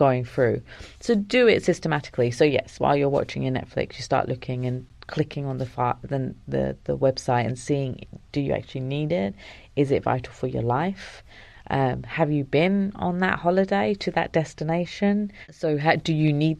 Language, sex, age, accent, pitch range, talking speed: English, female, 30-49, British, 135-165 Hz, 190 wpm